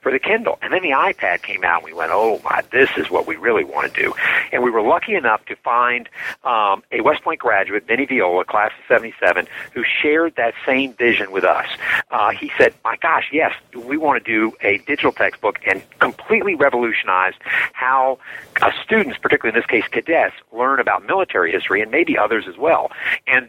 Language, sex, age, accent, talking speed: English, male, 50-69, American, 205 wpm